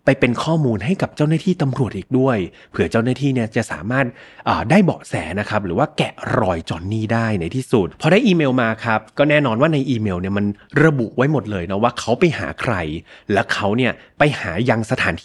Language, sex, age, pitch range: Thai, male, 30-49, 110-145 Hz